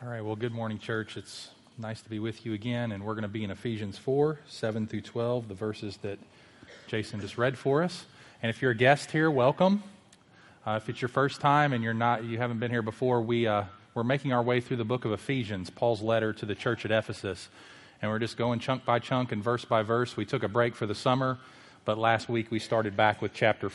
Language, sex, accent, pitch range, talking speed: English, male, American, 110-135 Hz, 245 wpm